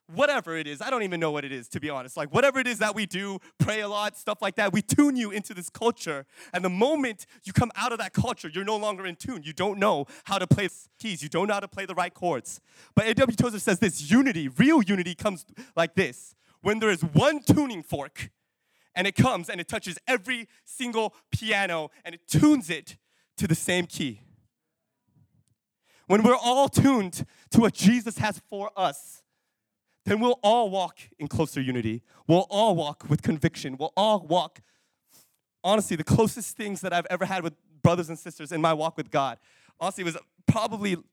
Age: 20-39